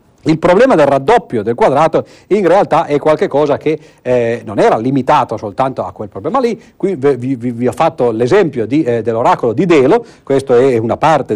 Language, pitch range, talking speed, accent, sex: Italian, 115-185 Hz, 185 wpm, native, male